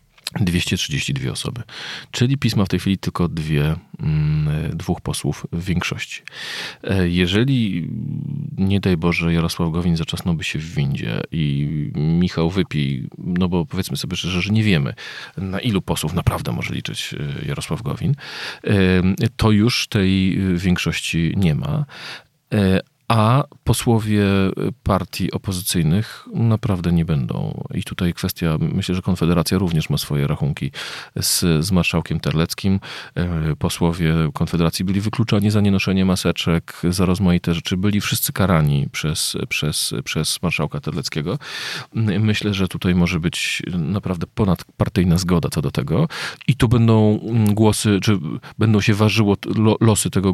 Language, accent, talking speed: Polish, native, 130 wpm